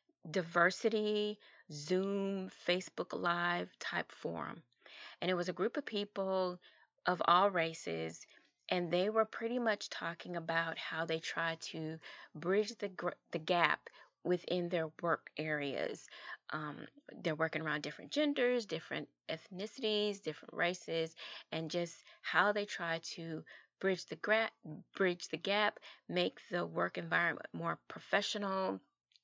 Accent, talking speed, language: American, 130 wpm, English